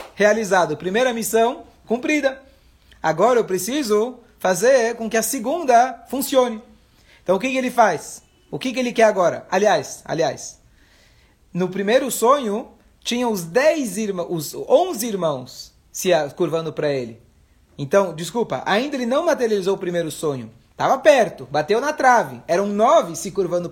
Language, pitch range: Portuguese, 185-240 Hz